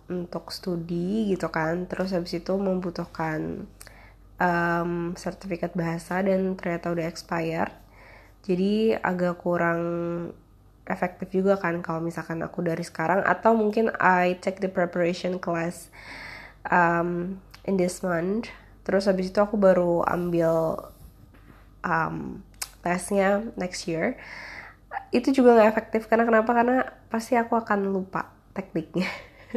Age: 20-39